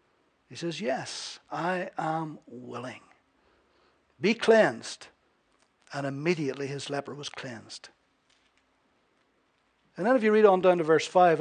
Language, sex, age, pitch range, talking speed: English, male, 60-79, 170-225 Hz, 125 wpm